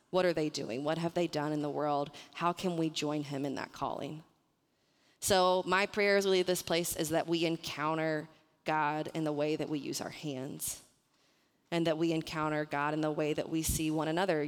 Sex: female